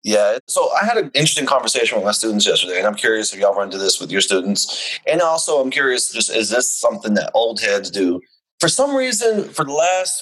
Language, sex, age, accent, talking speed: English, male, 30-49, American, 235 wpm